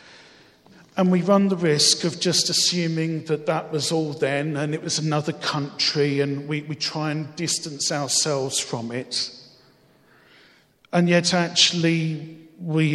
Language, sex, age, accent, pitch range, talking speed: English, male, 40-59, British, 135-155 Hz, 145 wpm